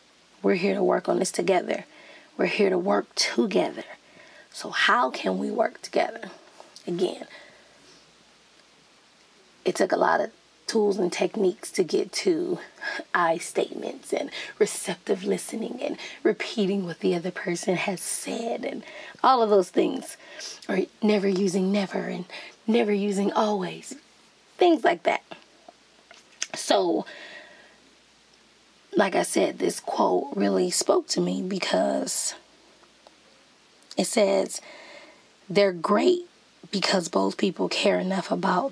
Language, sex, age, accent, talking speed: English, female, 20-39, American, 125 wpm